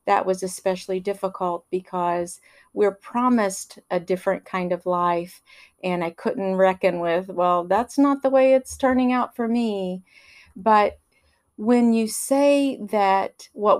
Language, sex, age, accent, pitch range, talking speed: English, female, 50-69, American, 185-220 Hz, 145 wpm